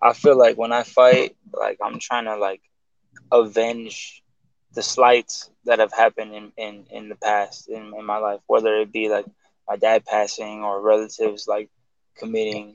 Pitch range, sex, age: 105-120 Hz, male, 10-29